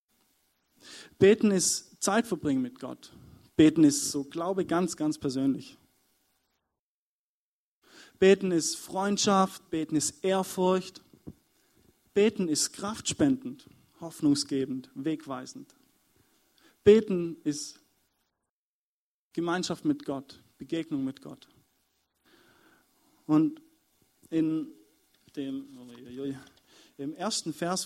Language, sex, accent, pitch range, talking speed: German, male, German, 135-185 Hz, 80 wpm